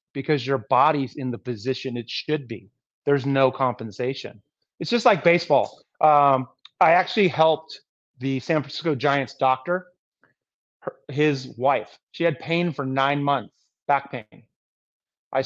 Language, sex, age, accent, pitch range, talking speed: English, male, 30-49, American, 135-160 Hz, 145 wpm